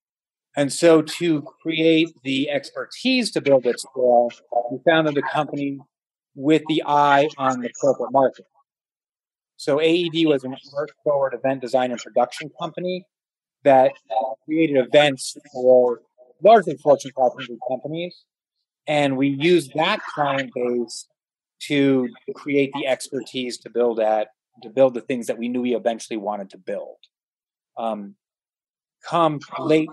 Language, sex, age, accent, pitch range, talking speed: English, male, 30-49, American, 125-150 Hz, 130 wpm